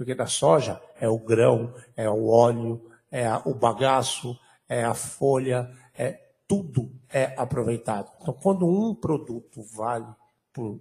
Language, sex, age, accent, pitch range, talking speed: Portuguese, male, 60-79, Brazilian, 120-165 Hz, 145 wpm